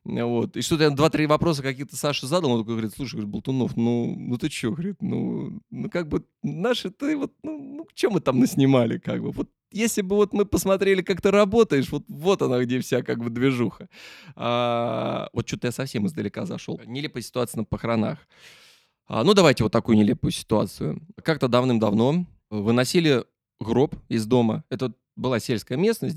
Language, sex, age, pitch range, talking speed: Russian, male, 20-39, 110-165 Hz, 180 wpm